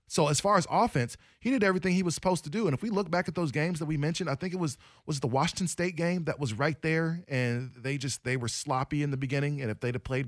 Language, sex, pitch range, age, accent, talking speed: English, male, 120-155 Hz, 20-39, American, 300 wpm